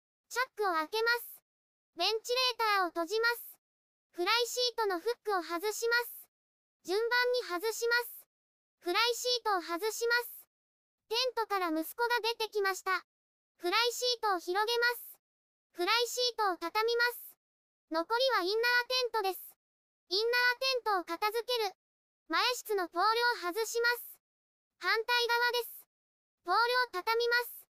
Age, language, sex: 20-39, Japanese, male